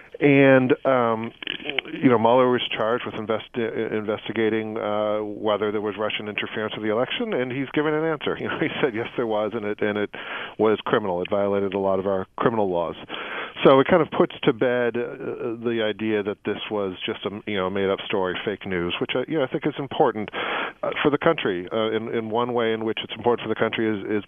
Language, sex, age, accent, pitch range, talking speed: English, male, 40-59, American, 100-115 Hz, 230 wpm